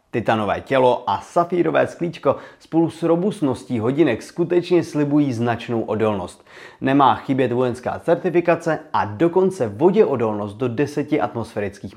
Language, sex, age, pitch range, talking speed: Czech, male, 30-49, 115-165 Hz, 115 wpm